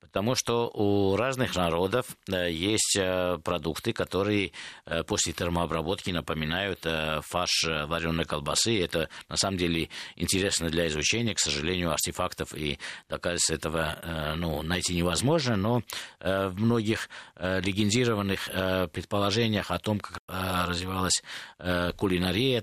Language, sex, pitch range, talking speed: Russian, male, 90-115 Hz, 105 wpm